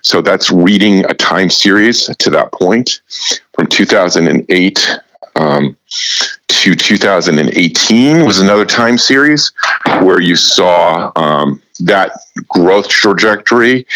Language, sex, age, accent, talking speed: English, male, 50-69, American, 110 wpm